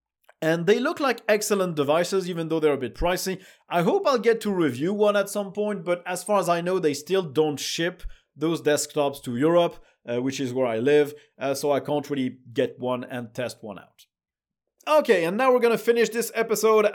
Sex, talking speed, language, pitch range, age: male, 220 wpm, English, 155-215 Hz, 30-49